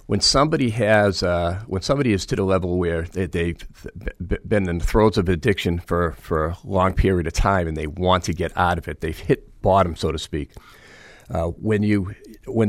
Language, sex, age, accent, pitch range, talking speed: English, male, 40-59, American, 85-105 Hz, 210 wpm